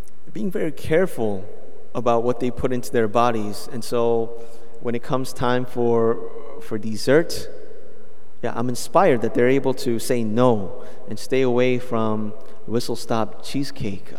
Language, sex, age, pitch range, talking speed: English, male, 30-49, 115-135 Hz, 150 wpm